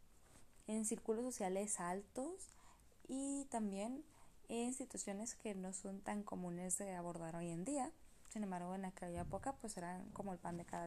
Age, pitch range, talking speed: 20-39, 185-225 Hz, 165 wpm